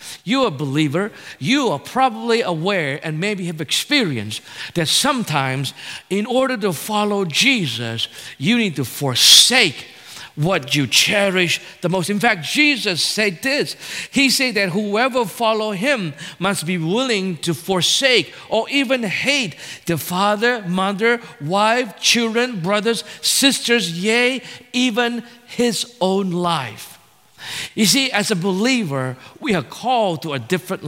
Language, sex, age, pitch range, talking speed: English, male, 50-69, 170-240 Hz, 135 wpm